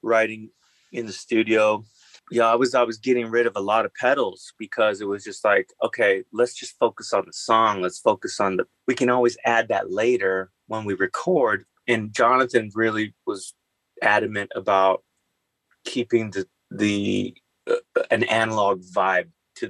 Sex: male